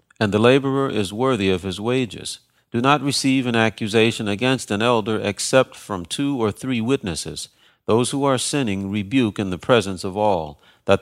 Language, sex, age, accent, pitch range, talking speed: English, male, 40-59, American, 95-120 Hz, 180 wpm